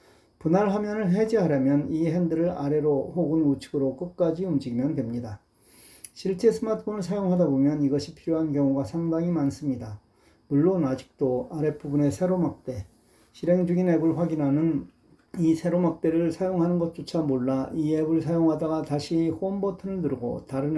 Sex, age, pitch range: male, 40-59, 140-170 Hz